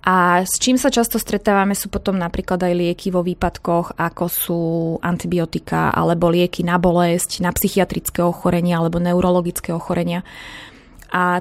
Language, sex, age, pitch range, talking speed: Slovak, female, 20-39, 180-210 Hz, 140 wpm